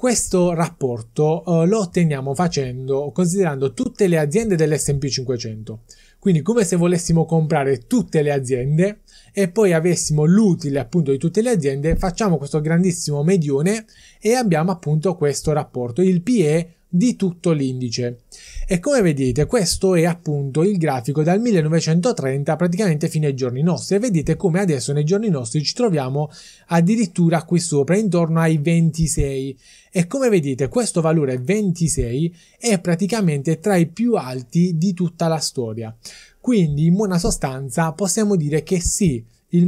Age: 20-39